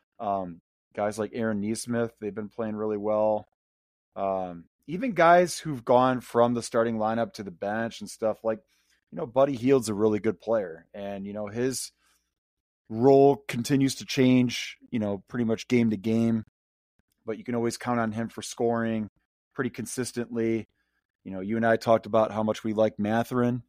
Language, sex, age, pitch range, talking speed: English, male, 30-49, 105-125 Hz, 180 wpm